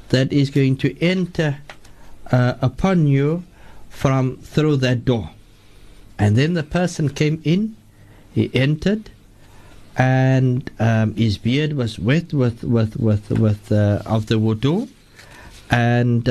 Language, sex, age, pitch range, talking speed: English, male, 60-79, 115-165 Hz, 130 wpm